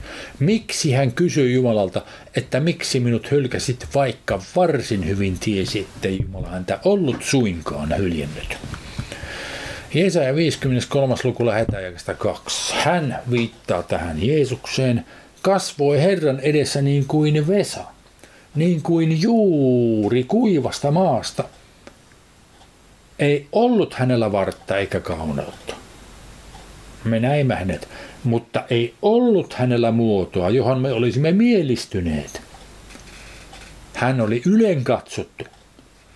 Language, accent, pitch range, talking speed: Finnish, native, 110-170 Hz, 95 wpm